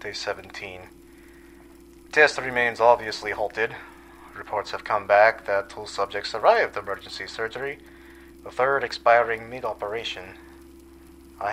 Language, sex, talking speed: English, male, 110 wpm